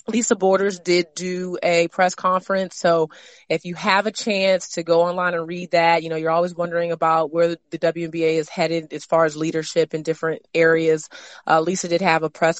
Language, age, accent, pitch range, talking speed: English, 30-49, American, 155-175 Hz, 205 wpm